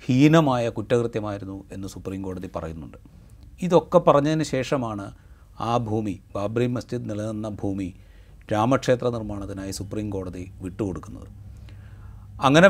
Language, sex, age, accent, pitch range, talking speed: Malayalam, male, 40-59, native, 100-125 Hz, 90 wpm